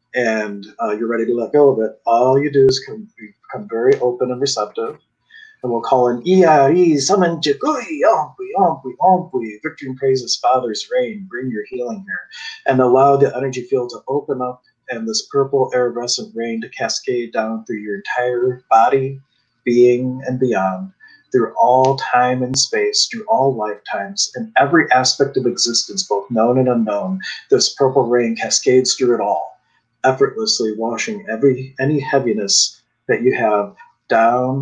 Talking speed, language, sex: 165 wpm, English, male